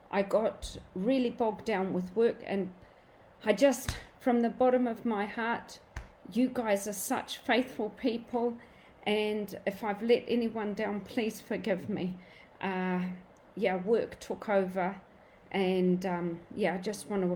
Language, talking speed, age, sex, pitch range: English, 150 wpm, 40-59, female, 190-240 Hz